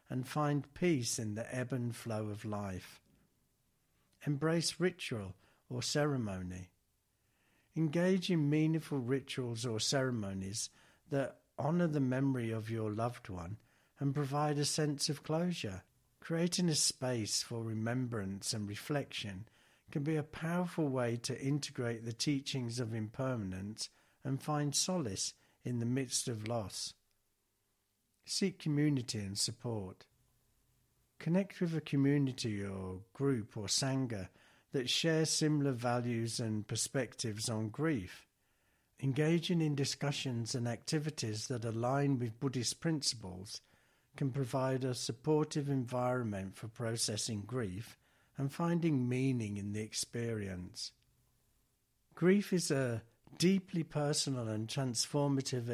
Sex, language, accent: male, English, British